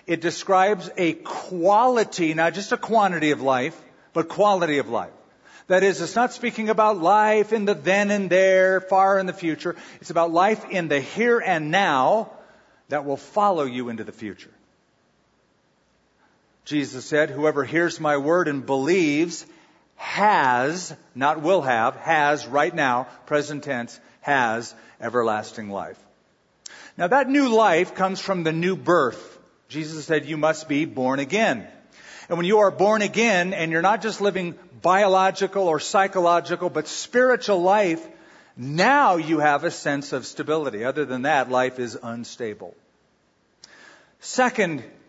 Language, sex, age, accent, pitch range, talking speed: English, male, 50-69, American, 145-200 Hz, 150 wpm